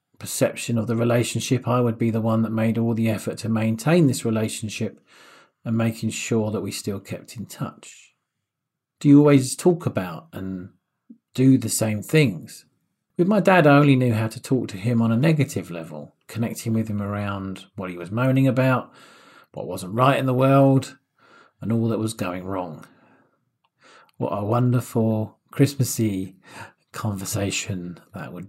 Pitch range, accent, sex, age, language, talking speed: 105-135 Hz, British, male, 40-59, English, 170 wpm